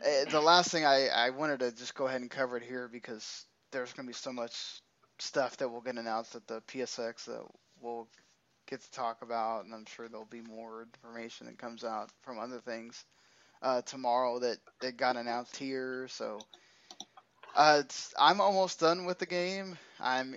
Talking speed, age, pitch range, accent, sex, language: 190 wpm, 10-29, 120-155 Hz, American, male, English